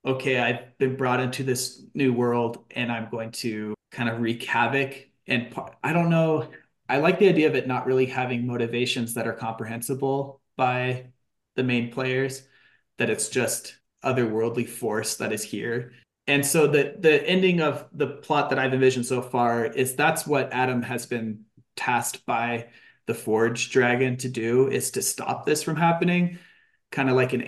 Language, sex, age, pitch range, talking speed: English, male, 30-49, 115-135 Hz, 175 wpm